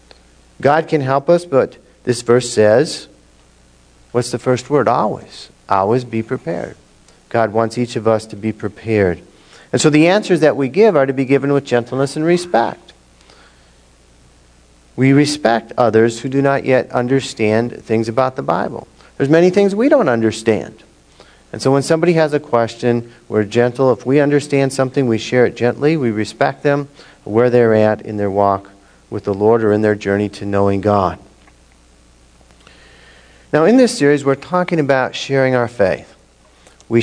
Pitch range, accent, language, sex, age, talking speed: 100-135 Hz, American, English, male, 50-69, 170 wpm